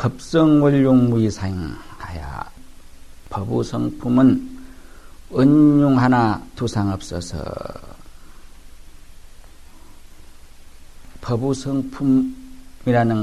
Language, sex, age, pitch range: Korean, male, 50-69, 85-130 Hz